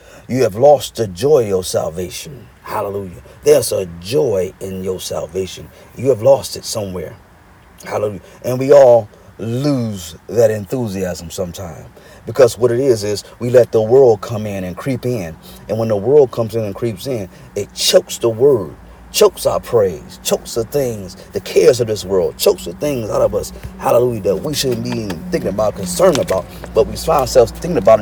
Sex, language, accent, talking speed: male, English, American, 185 wpm